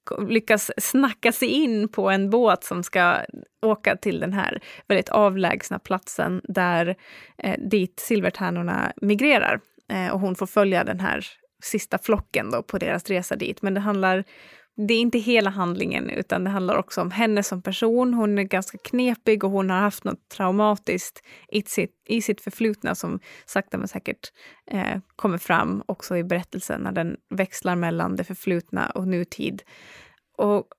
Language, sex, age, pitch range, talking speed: English, female, 20-39, 185-220 Hz, 160 wpm